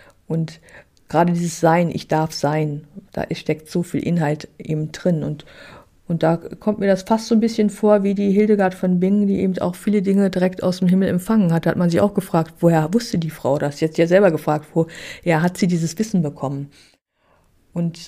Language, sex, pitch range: German, female, 165-200 Hz